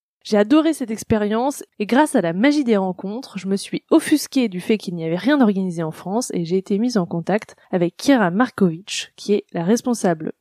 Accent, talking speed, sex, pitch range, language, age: French, 215 wpm, female, 185-245 Hz, French, 20-39